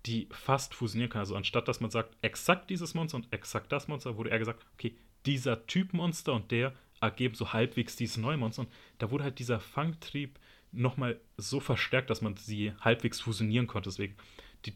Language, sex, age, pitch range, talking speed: German, male, 30-49, 110-135 Hz, 190 wpm